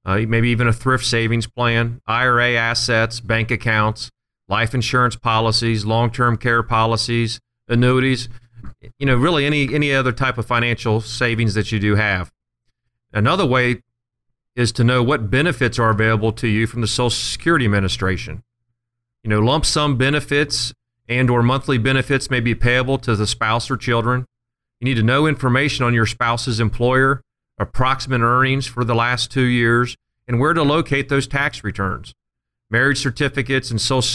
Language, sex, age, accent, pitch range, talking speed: English, male, 40-59, American, 110-125 Hz, 160 wpm